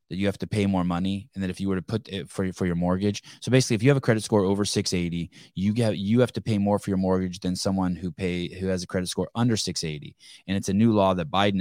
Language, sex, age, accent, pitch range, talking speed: English, male, 20-39, American, 95-115 Hz, 305 wpm